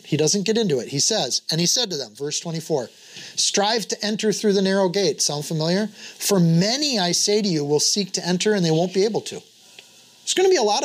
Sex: male